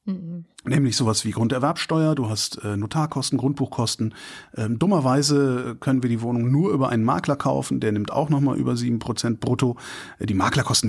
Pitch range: 115-150 Hz